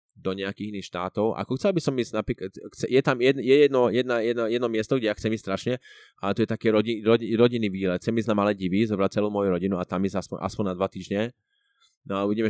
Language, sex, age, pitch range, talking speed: Czech, male, 20-39, 100-140 Hz, 225 wpm